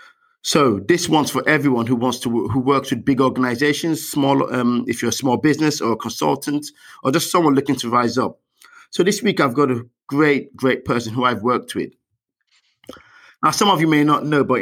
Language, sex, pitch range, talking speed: English, male, 125-155 Hz, 210 wpm